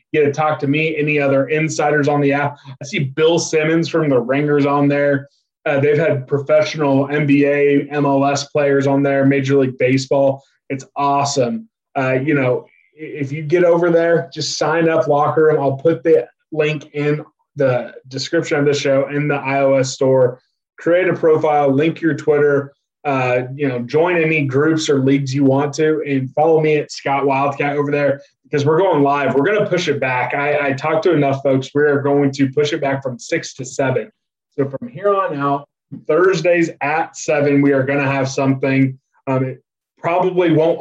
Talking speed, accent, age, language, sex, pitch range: 195 wpm, American, 20-39, English, male, 135-155 Hz